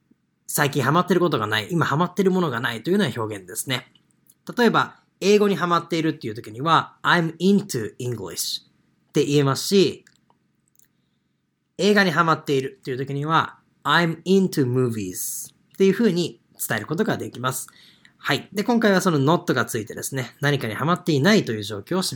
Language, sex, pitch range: Japanese, male, 130-180 Hz